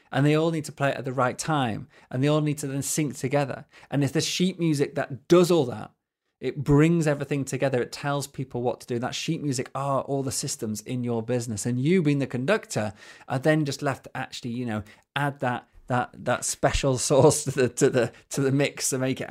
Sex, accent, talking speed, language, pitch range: male, British, 240 wpm, English, 115-140 Hz